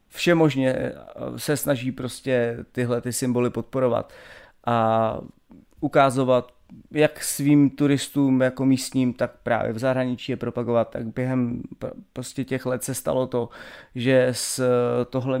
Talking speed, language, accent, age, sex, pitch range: 125 wpm, Czech, native, 30-49, male, 120-135 Hz